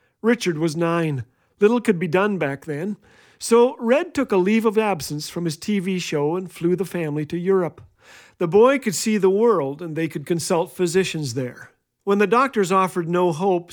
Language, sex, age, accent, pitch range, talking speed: English, male, 50-69, American, 160-205 Hz, 190 wpm